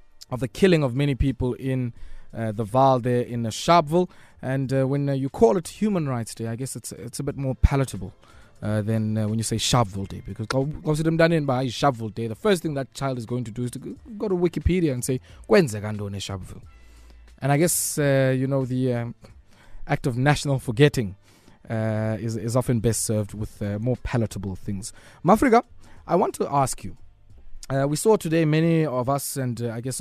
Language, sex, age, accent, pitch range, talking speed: English, male, 20-39, South African, 115-150 Hz, 205 wpm